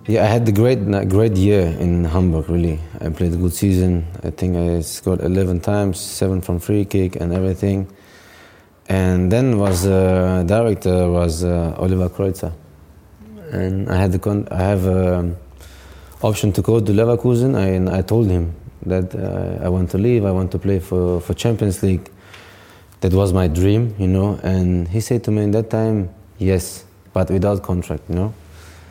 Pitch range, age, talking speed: 90-105 Hz, 20-39, 185 wpm